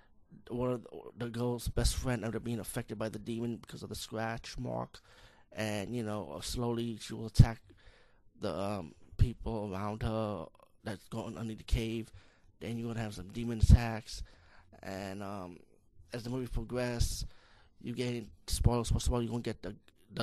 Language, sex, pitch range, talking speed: English, male, 105-120 Hz, 180 wpm